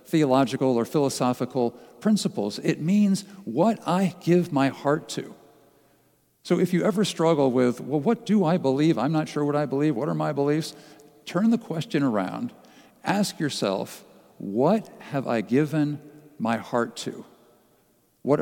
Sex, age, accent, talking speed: male, 50-69, American, 155 wpm